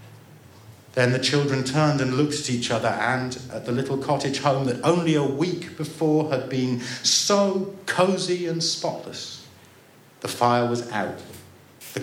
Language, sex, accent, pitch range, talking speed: English, male, British, 120-155 Hz, 155 wpm